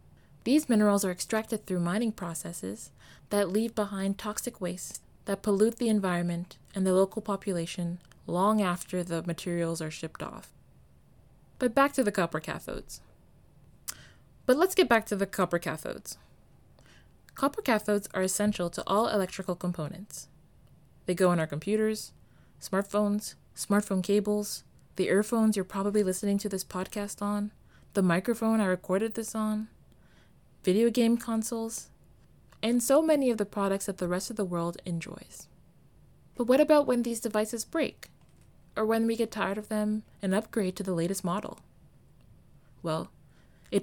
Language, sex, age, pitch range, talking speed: English, female, 20-39, 180-220 Hz, 150 wpm